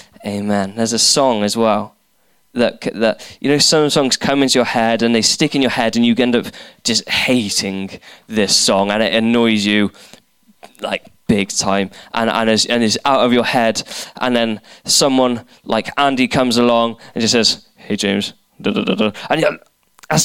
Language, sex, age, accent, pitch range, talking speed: English, male, 10-29, British, 110-145 Hz, 180 wpm